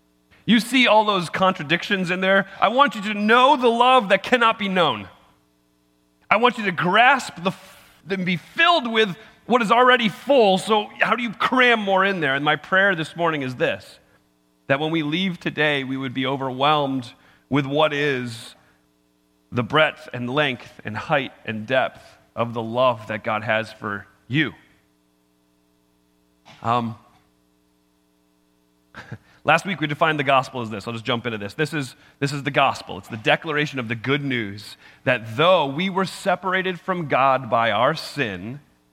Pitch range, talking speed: 115-190 Hz, 175 wpm